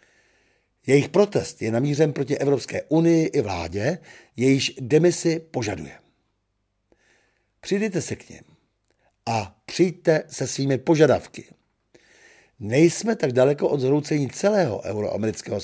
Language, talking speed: Czech, 105 wpm